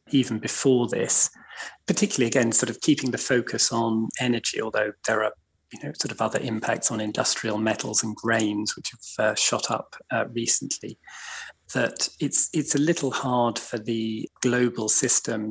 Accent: British